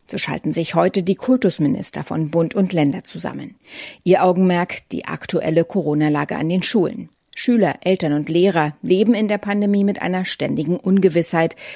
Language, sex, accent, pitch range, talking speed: German, female, German, 170-210 Hz, 160 wpm